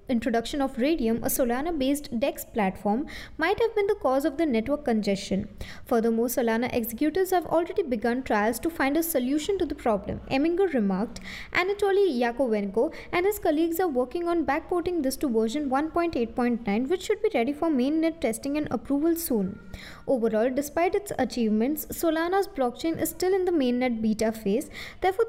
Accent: Indian